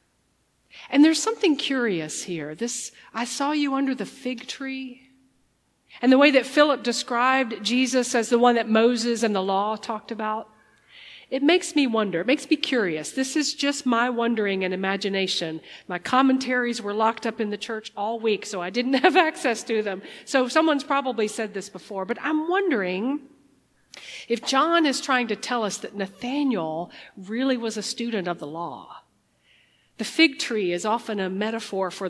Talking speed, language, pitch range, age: 180 wpm, English, 205-265 Hz, 50-69